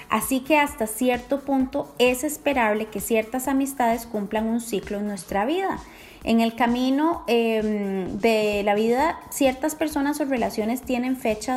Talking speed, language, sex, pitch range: 150 wpm, Spanish, female, 215-280 Hz